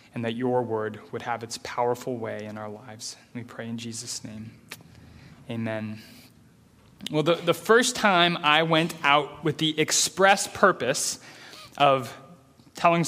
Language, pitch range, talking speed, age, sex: English, 135-175 Hz, 145 wpm, 20-39, male